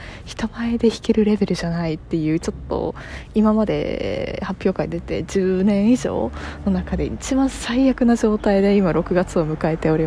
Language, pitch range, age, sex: Japanese, 155-240 Hz, 20-39, female